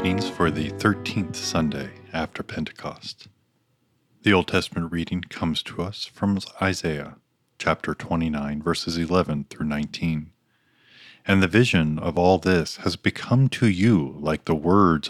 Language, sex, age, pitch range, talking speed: English, male, 40-59, 85-95 Hz, 135 wpm